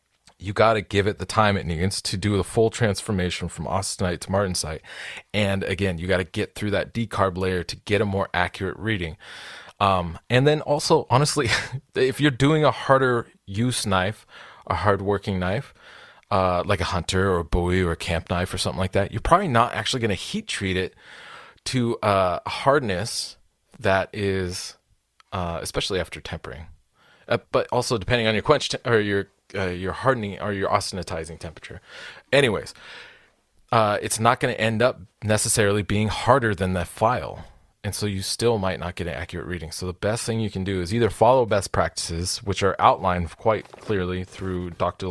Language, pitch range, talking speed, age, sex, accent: English, 90-110 Hz, 190 wpm, 30-49, male, American